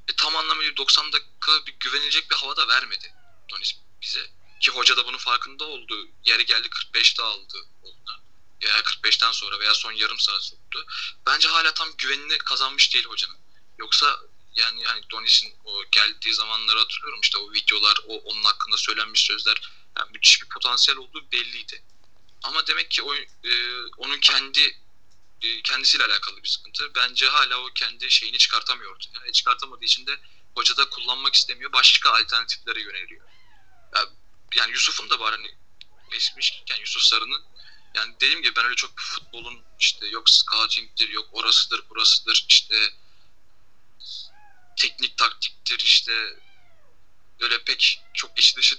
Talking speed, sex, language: 145 wpm, male, Turkish